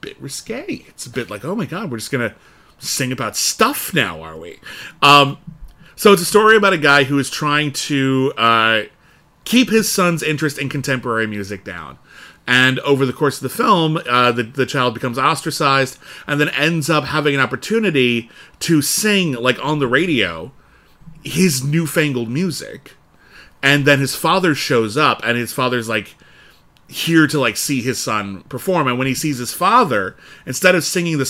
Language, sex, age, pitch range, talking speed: English, male, 30-49, 115-155 Hz, 180 wpm